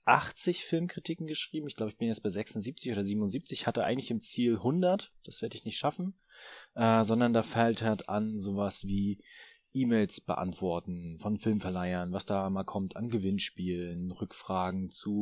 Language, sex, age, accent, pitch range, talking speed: German, male, 20-39, German, 100-130 Hz, 165 wpm